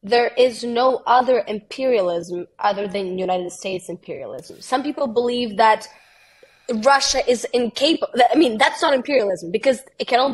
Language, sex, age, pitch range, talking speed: English, female, 20-39, 235-290 Hz, 155 wpm